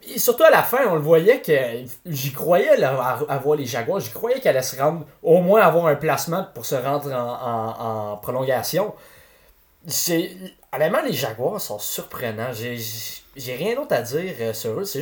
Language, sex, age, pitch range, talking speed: French, male, 20-39, 125-170 Hz, 195 wpm